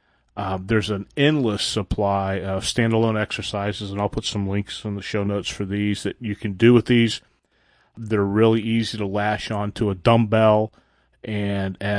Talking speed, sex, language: 170 wpm, male, English